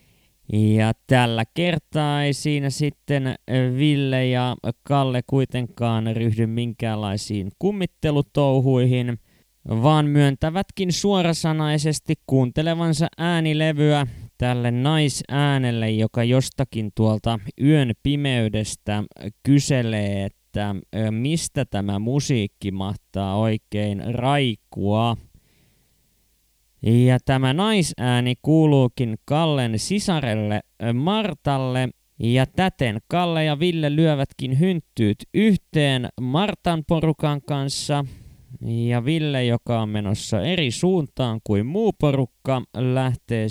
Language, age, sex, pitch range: Finnish, 20-39, male, 115-150 Hz